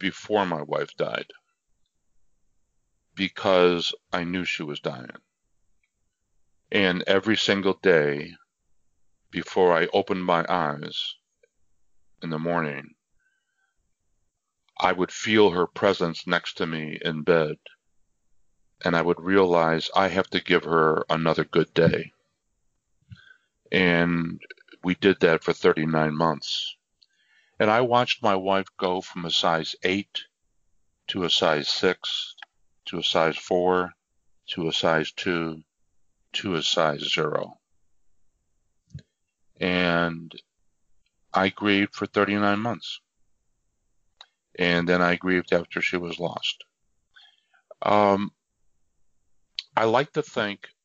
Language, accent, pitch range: English, American, 80-100 Hz